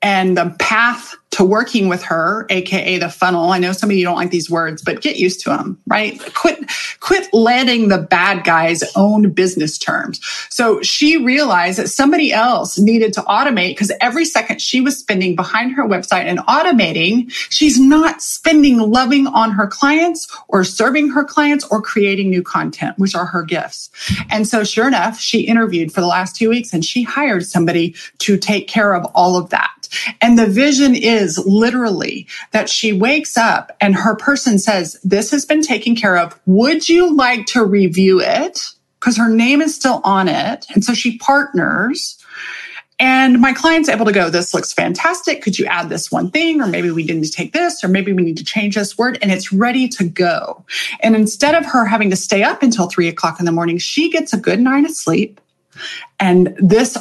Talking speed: 200 wpm